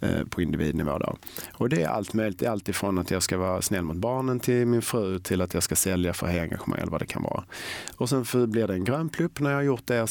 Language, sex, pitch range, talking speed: Swedish, male, 95-125 Hz, 275 wpm